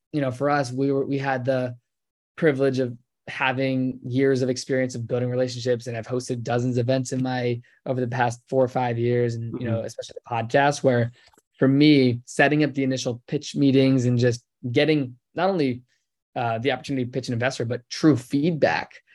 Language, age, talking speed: English, 20-39, 195 wpm